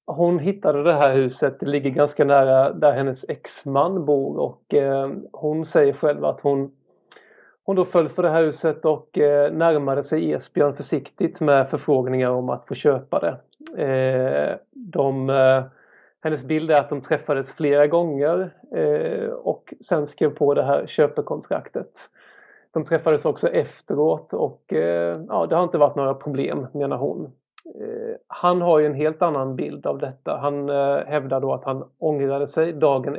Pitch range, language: 140-165 Hz, Swedish